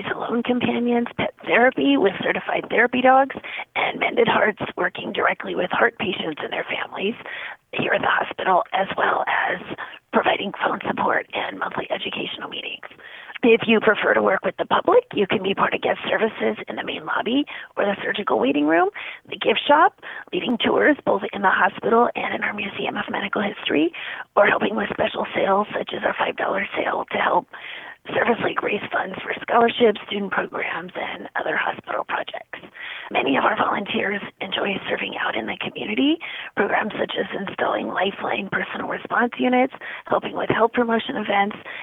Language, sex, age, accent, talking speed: English, female, 30-49, American, 170 wpm